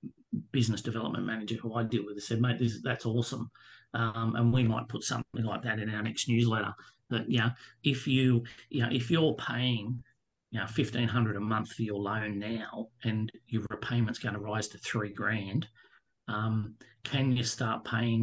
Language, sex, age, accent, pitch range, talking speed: English, male, 40-59, Australian, 110-125 Hz, 190 wpm